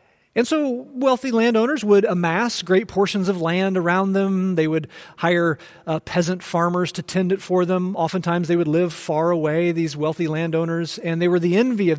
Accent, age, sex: American, 40-59, male